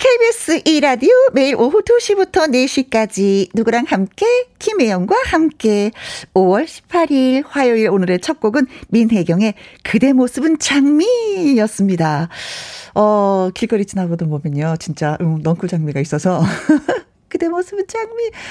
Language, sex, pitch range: Korean, female, 185-275 Hz